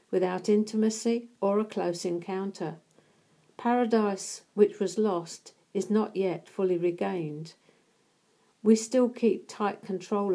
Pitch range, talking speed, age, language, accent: 175-215 Hz, 115 wpm, 50-69, English, British